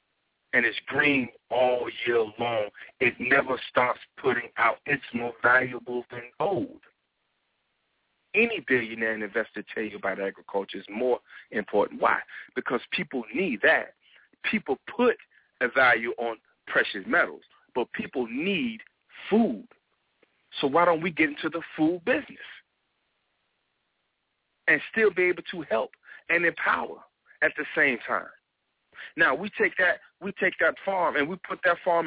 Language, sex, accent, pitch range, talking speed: English, male, American, 140-190 Hz, 140 wpm